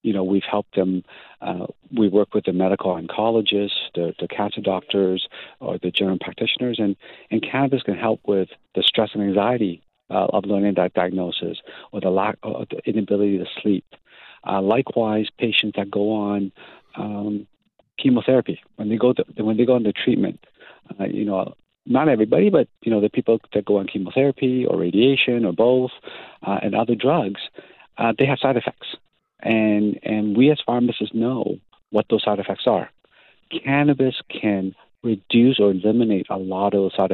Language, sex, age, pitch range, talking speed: English, male, 50-69, 100-120 Hz, 175 wpm